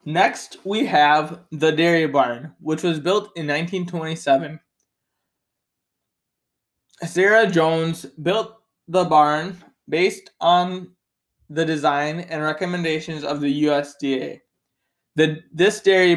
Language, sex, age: English, male, 20-39